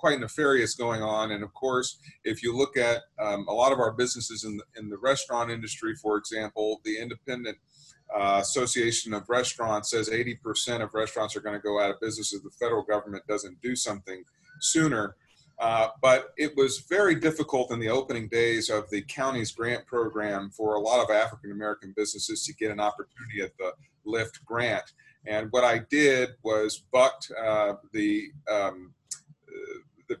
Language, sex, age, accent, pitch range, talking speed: English, male, 40-59, American, 105-135 Hz, 175 wpm